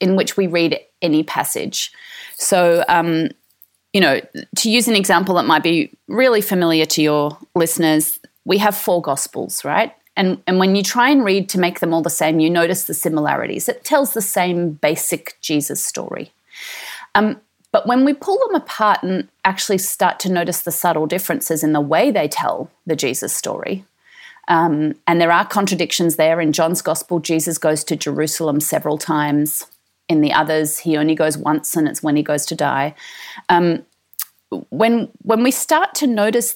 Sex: female